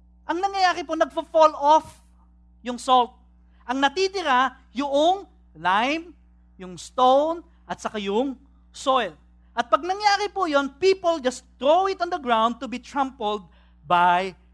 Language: English